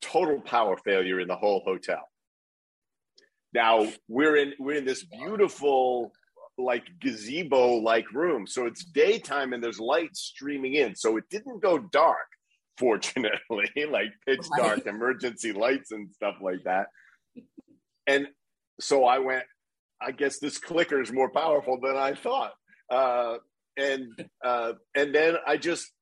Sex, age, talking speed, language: male, 40-59, 140 wpm, English